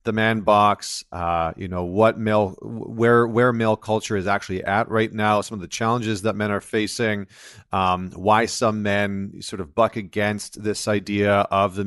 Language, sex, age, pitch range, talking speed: English, male, 30-49, 100-120 Hz, 185 wpm